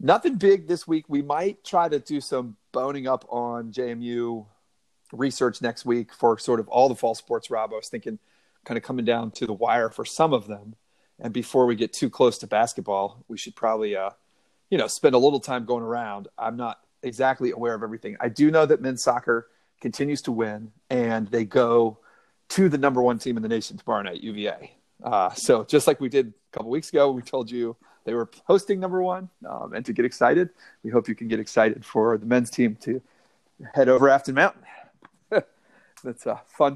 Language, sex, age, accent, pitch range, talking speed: English, male, 40-59, American, 115-145 Hz, 210 wpm